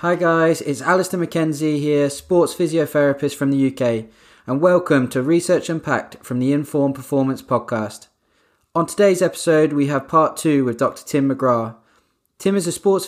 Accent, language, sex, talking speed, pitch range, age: British, English, male, 165 wpm, 125-150 Hz, 20-39